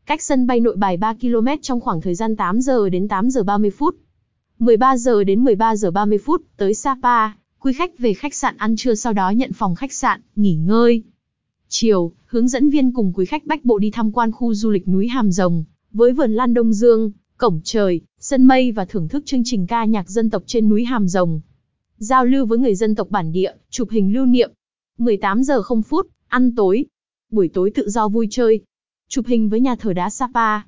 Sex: female